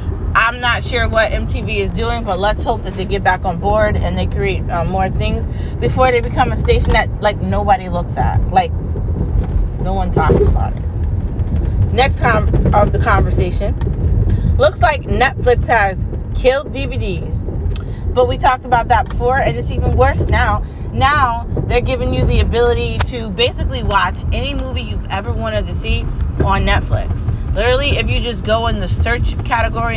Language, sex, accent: English, female, American